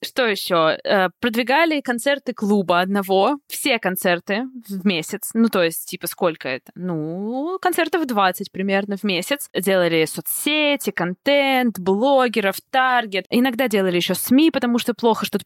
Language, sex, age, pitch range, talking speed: Russian, female, 20-39, 195-260 Hz, 140 wpm